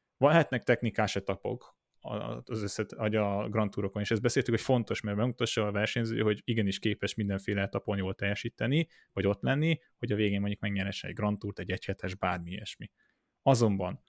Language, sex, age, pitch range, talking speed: Hungarian, male, 20-39, 100-120 Hz, 175 wpm